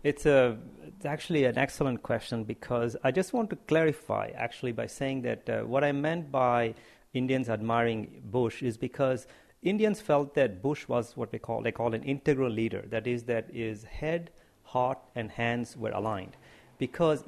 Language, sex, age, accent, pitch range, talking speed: English, male, 50-69, Indian, 115-140 Hz, 175 wpm